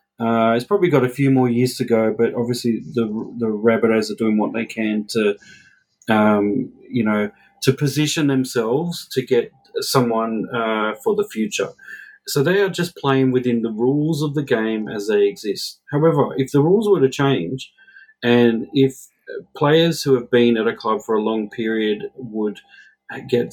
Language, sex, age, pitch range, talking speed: English, male, 40-59, 110-140 Hz, 180 wpm